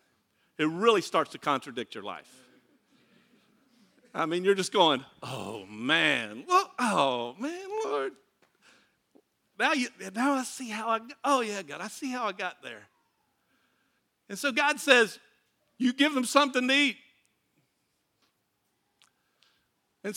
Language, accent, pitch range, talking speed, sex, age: English, American, 230-330 Hz, 130 wpm, male, 50-69